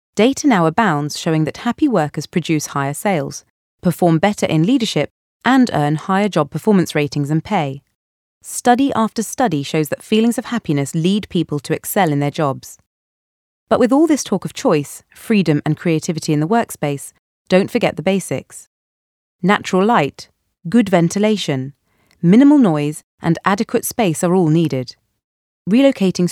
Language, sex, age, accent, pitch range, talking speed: English, female, 30-49, British, 150-200 Hz, 155 wpm